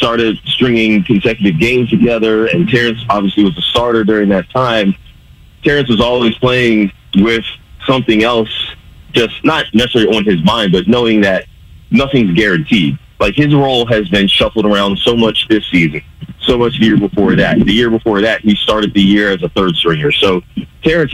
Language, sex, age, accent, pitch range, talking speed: English, male, 30-49, American, 100-115 Hz, 180 wpm